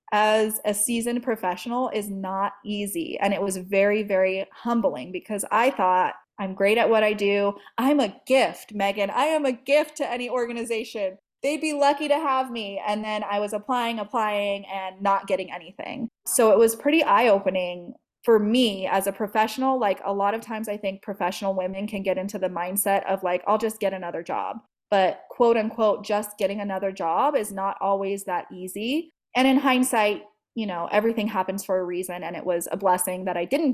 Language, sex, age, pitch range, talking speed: English, female, 20-39, 190-230 Hz, 195 wpm